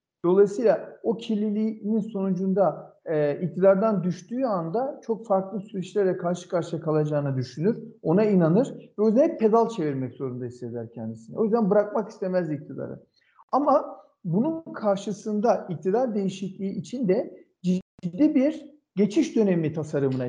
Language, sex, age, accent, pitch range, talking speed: Turkish, male, 50-69, native, 170-225 Hz, 125 wpm